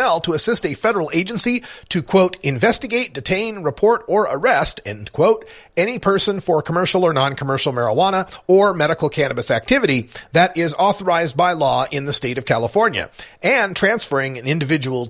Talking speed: 155 wpm